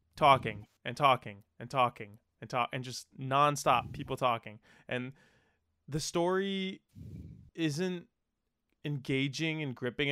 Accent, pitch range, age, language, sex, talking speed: American, 120-150 Hz, 20-39, English, male, 115 wpm